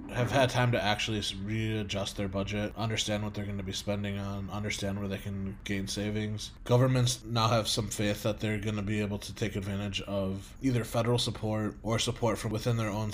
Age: 20-39